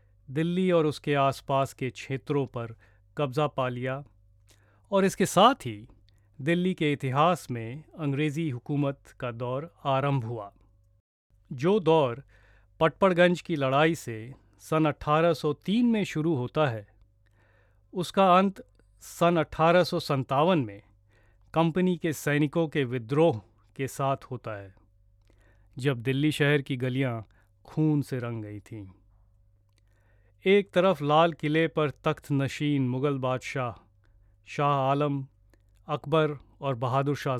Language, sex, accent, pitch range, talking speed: Hindi, male, native, 105-150 Hz, 120 wpm